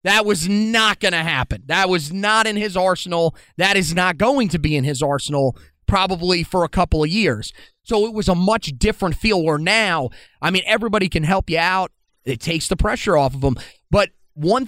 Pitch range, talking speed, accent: 155-195 Hz, 215 wpm, American